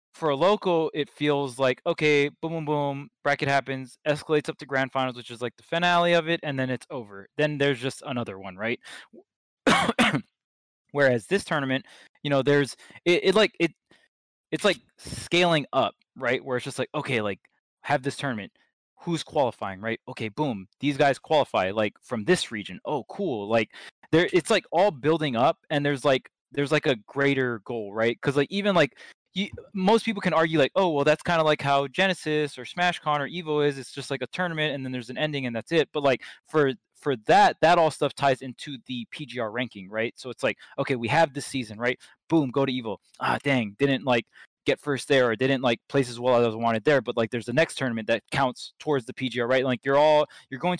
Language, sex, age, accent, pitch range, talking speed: English, male, 20-39, American, 125-155 Hz, 220 wpm